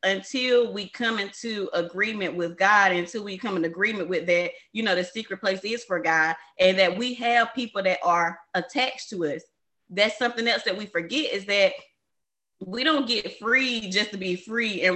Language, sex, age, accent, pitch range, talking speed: English, female, 20-39, American, 195-265 Hz, 195 wpm